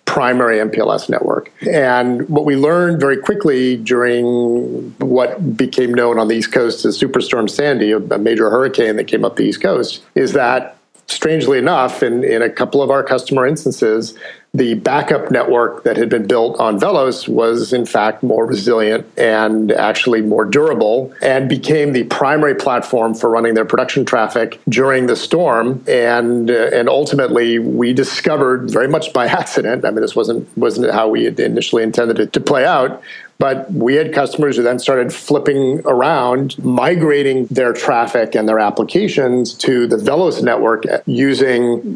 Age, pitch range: 50-69, 115-140 Hz